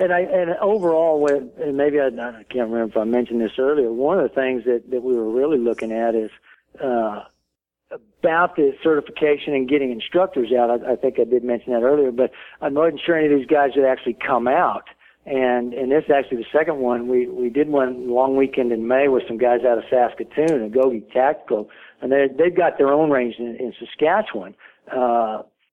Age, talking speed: 50-69, 215 wpm